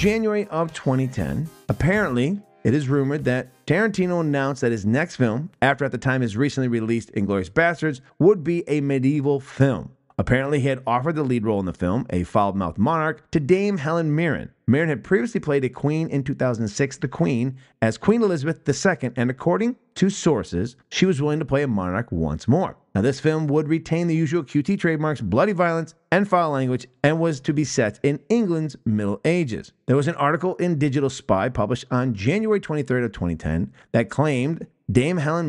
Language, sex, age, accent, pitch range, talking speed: English, male, 30-49, American, 125-170 Hz, 190 wpm